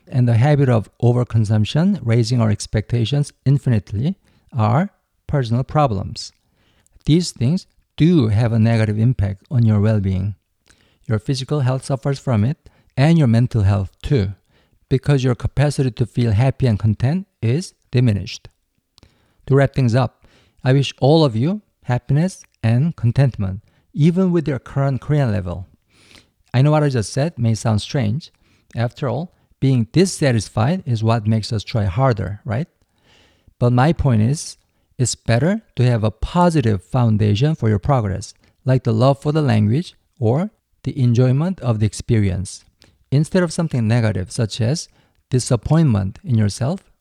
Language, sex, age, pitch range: Korean, male, 50-69, 110-145 Hz